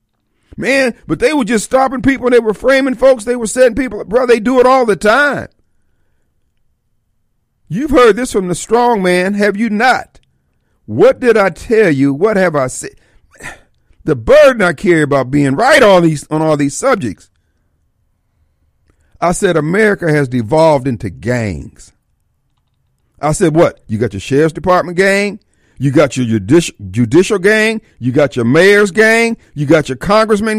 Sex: male